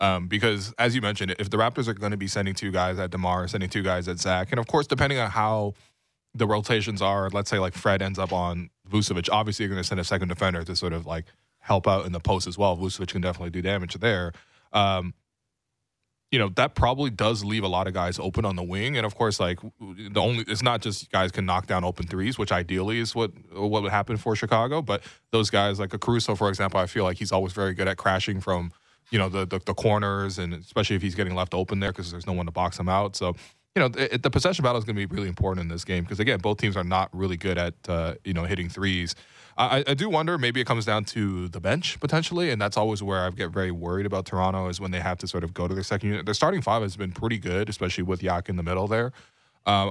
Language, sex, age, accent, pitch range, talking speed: English, male, 20-39, American, 90-110 Hz, 265 wpm